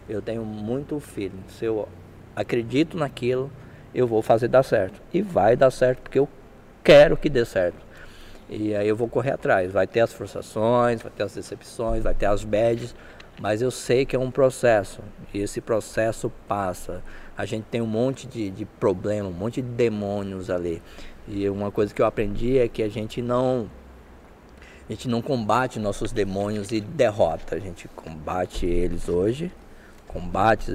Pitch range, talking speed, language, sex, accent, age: 100-125 Hz, 175 wpm, Portuguese, male, Brazilian, 20-39